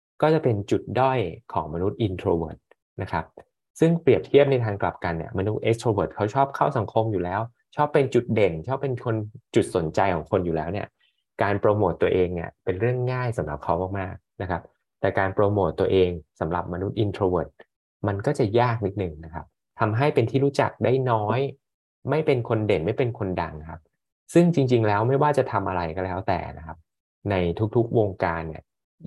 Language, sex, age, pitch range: Thai, male, 20-39, 85-120 Hz